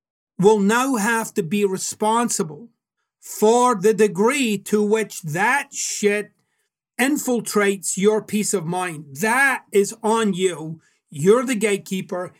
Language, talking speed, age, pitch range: English, 120 wpm, 40-59, 190-230 Hz